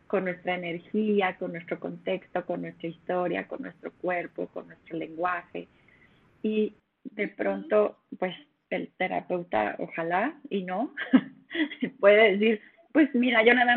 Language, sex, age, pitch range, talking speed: Spanish, female, 30-49, 185-240 Hz, 135 wpm